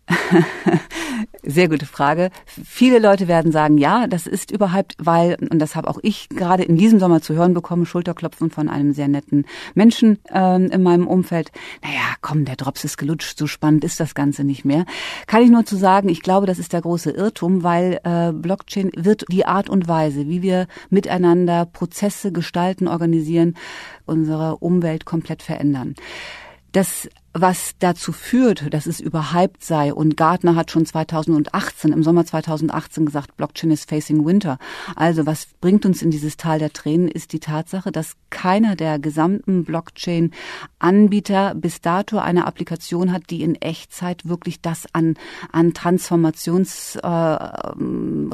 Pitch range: 155-185 Hz